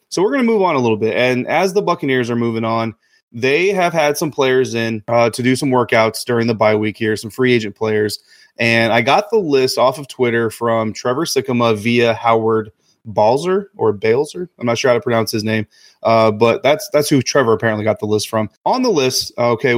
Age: 30-49